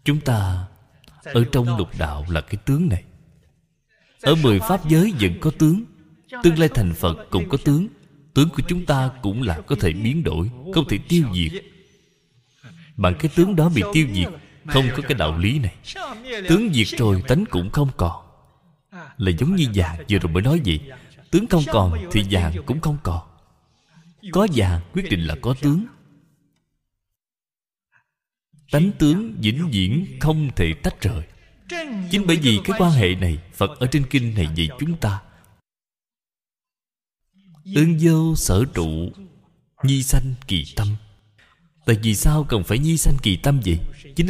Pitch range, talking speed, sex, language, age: 95-160 Hz, 170 wpm, male, Vietnamese, 20-39